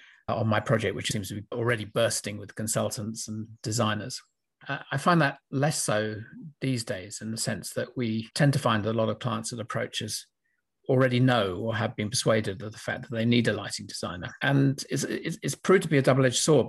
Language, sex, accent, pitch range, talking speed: English, male, British, 110-135 Hz, 210 wpm